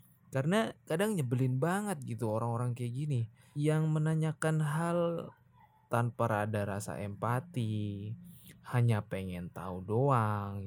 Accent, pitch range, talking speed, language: native, 115-150 Hz, 105 wpm, Indonesian